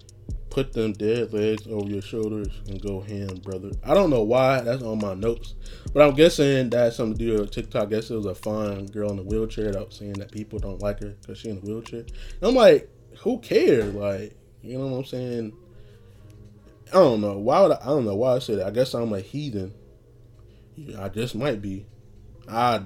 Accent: American